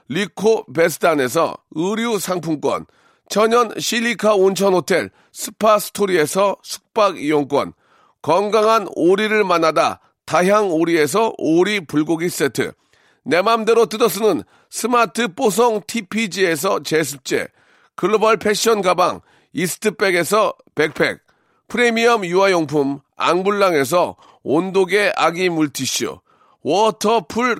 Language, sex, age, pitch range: Korean, male, 40-59, 175-225 Hz